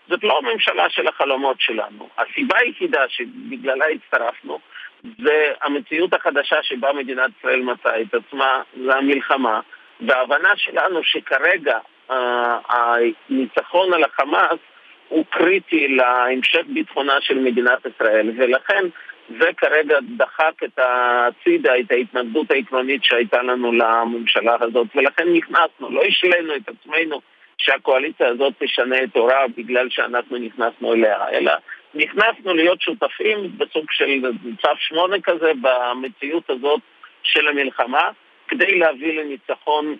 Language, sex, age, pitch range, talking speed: Hebrew, male, 50-69, 125-170 Hz, 115 wpm